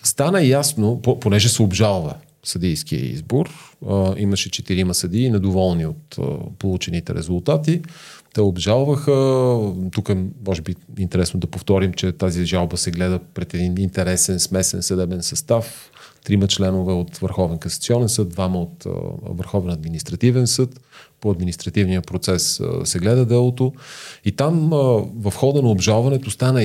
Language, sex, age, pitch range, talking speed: Bulgarian, male, 30-49, 90-125 Hz, 130 wpm